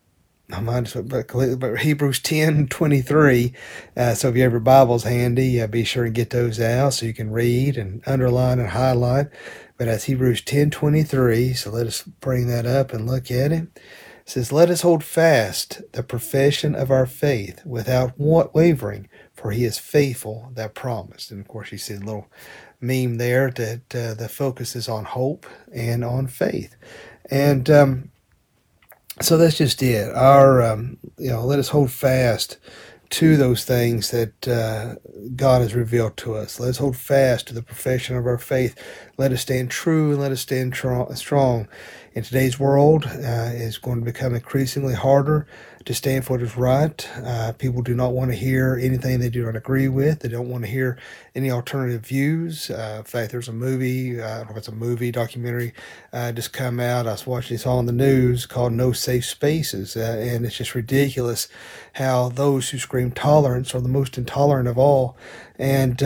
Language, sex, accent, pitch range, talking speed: English, male, American, 120-135 Hz, 190 wpm